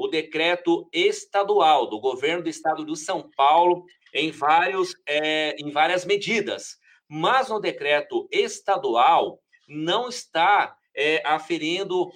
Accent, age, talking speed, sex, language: Brazilian, 50-69, 120 wpm, male, Portuguese